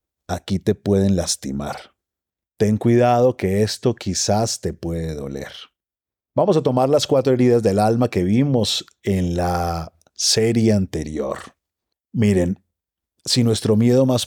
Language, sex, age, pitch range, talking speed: Spanish, male, 50-69, 90-120 Hz, 130 wpm